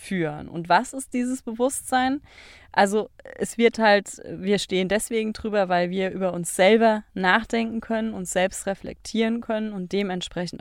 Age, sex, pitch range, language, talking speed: 30-49, female, 170-215 Hz, German, 155 wpm